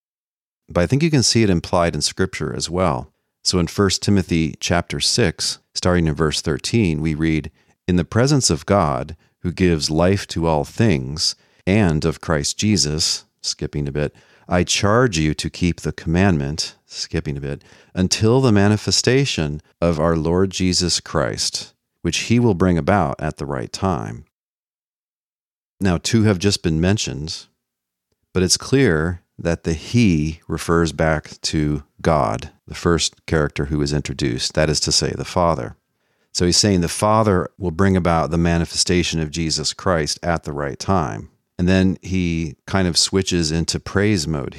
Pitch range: 80-95 Hz